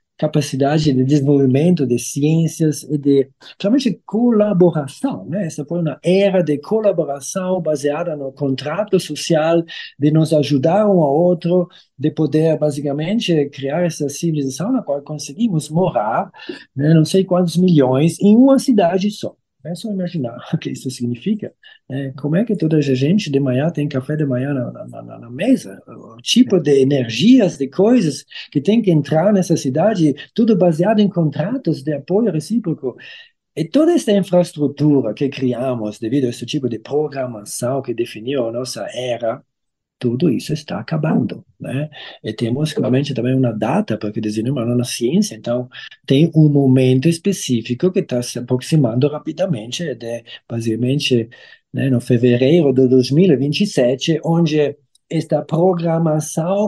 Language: Portuguese